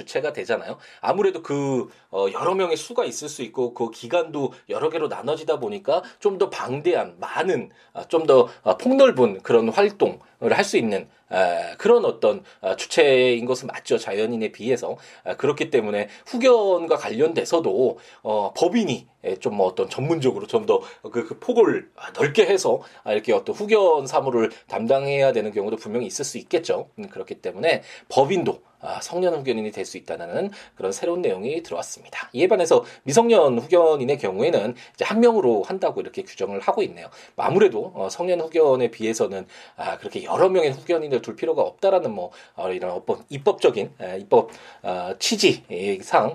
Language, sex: Korean, male